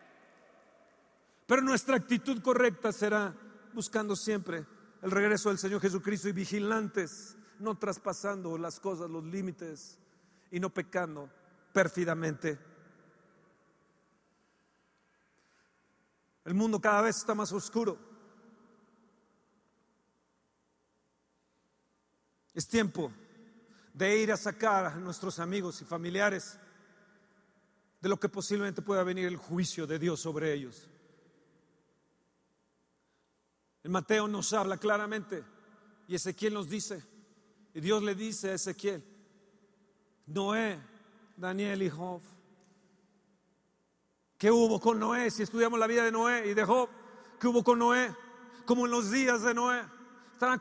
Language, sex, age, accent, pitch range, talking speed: Spanish, male, 50-69, Mexican, 185-240 Hz, 115 wpm